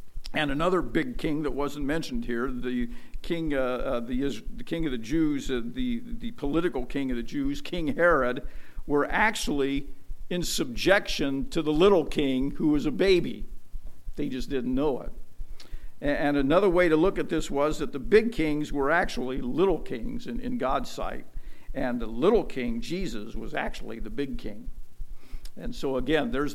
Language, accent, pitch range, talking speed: English, American, 120-155 Hz, 170 wpm